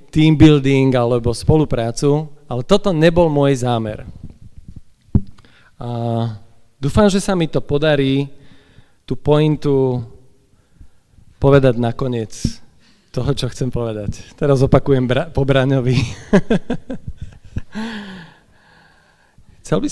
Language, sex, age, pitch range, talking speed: Slovak, male, 40-59, 125-155 Hz, 90 wpm